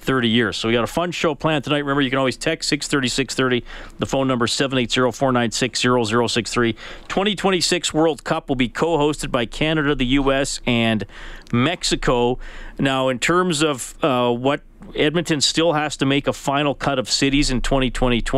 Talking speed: 165 wpm